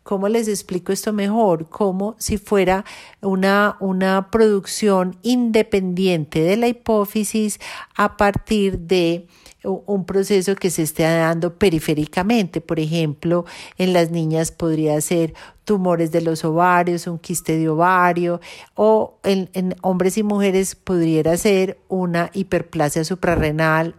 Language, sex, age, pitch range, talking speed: Spanish, female, 40-59, 165-200 Hz, 130 wpm